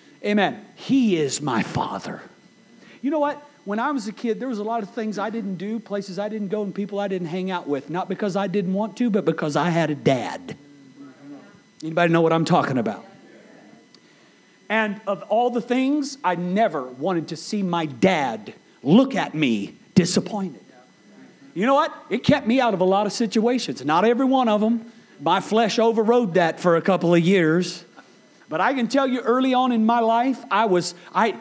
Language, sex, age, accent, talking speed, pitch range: English, male, 40-59, American, 205 wpm, 175-240 Hz